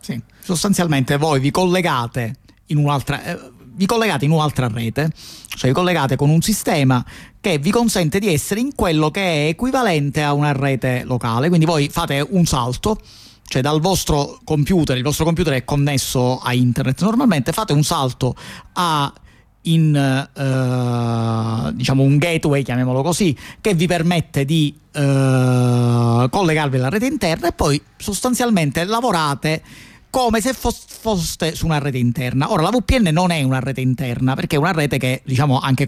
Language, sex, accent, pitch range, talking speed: Italian, male, native, 130-175 Hz, 160 wpm